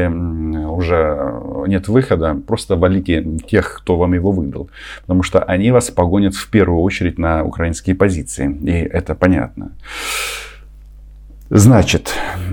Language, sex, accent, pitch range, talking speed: Russian, male, native, 80-105 Hz, 120 wpm